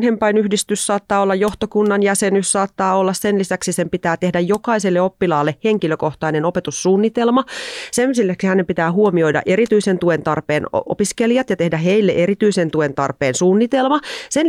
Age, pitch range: 30-49, 160-215 Hz